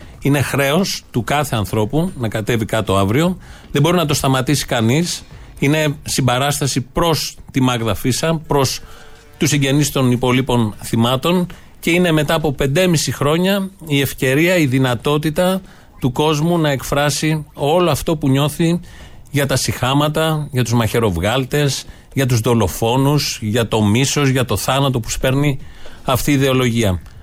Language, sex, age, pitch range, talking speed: Greek, male, 40-59, 120-155 Hz, 145 wpm